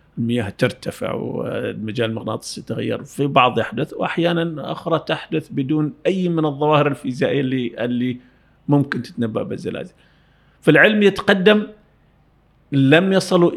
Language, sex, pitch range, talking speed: Arabic, male, 120-140 Hz, 105 wpm